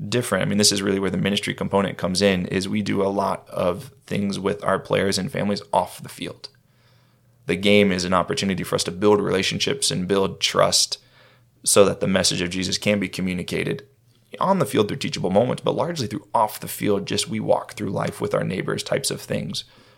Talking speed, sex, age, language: 215 wpm, male, 20-39, English